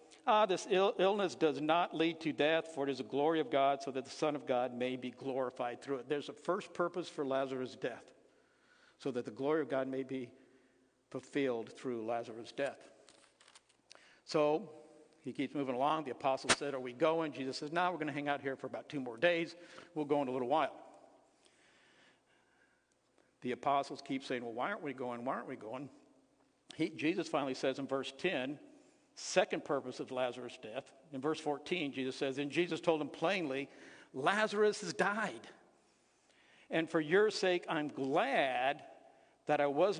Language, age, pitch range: English, 60-79, 130-170 Hz